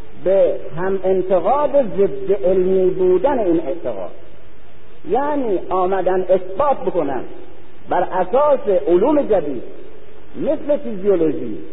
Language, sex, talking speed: Persian, male, 90 wpm